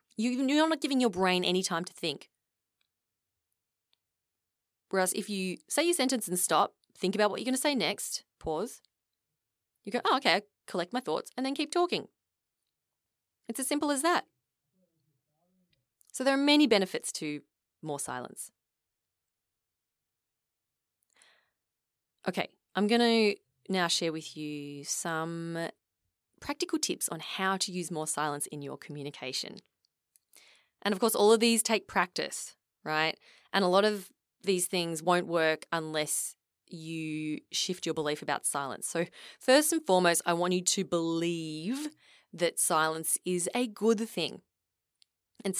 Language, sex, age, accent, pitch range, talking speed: English, female, 20-39, Australian, 150-210 Hz, 145 wpm